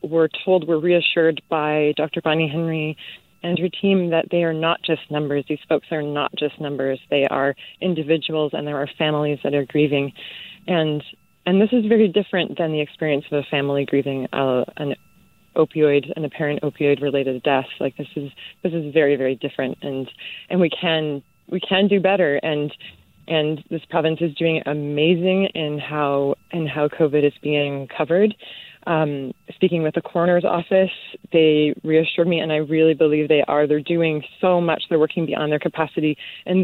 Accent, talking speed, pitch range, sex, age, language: American, 180 wpm, 150-170 Hz, female, 20-39, English